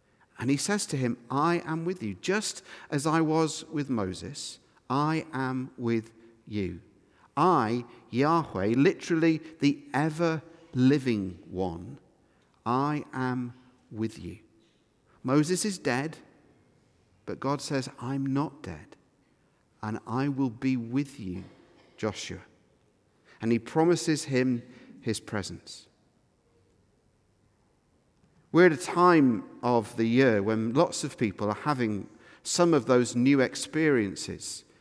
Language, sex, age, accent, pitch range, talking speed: English, male, 50-69, British, 115-155 Hz, 120 wpm